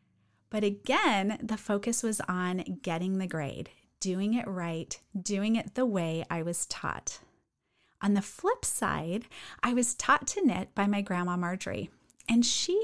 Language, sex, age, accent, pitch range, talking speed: English, female, 30-49, American, 200-275 Hz, 160 wpm